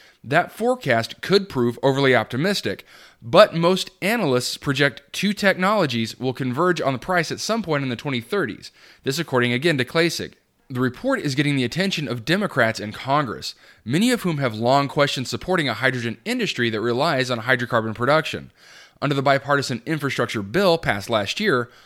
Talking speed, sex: 170 wpm, male